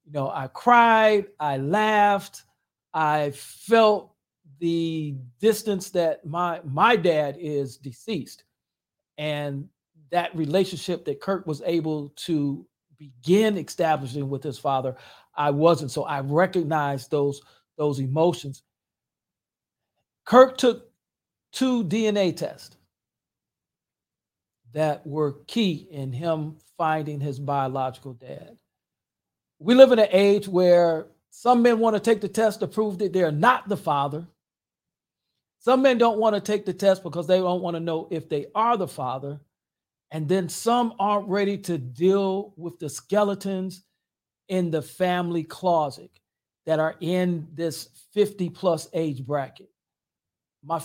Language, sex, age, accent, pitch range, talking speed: English, male, 50-69, American, 145-200 Hz, 130 wpm